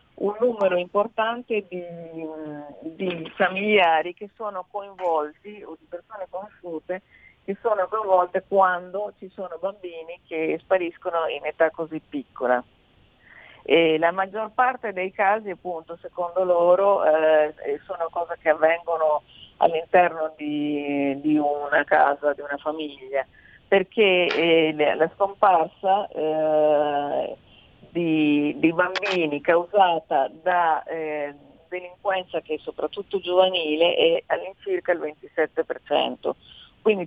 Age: 40-59